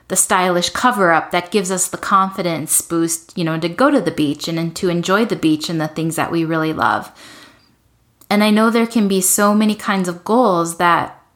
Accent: American